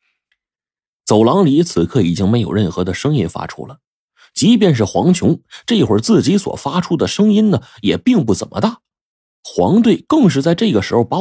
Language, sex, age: Chinese, male, 30-49